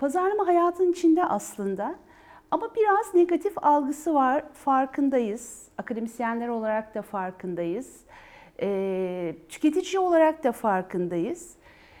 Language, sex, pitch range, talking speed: Turkish, female, 205-290 Hz, 90 wpm